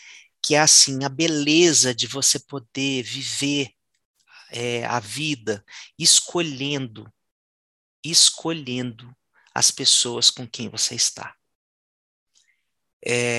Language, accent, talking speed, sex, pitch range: Portuguese, Brazilian, 95 wpm, male, 115-150 Hz